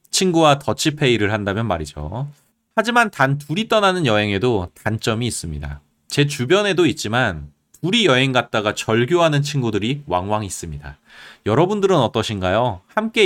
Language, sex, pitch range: Korean, male, 95-160 Hz